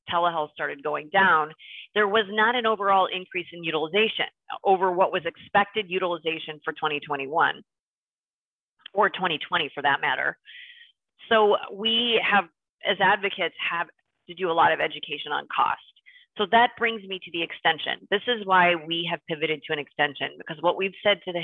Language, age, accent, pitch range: English, 30-49, American, 155-195 Hz